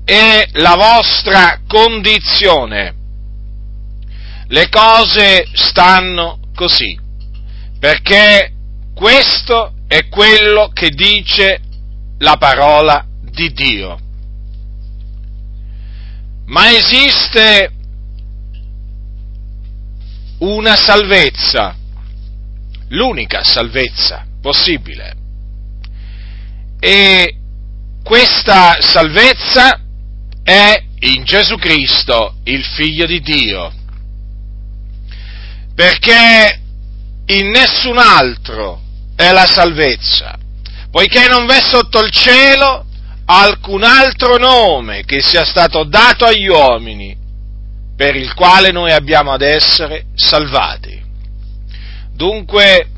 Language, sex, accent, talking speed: Italian, male, native, 75 wpm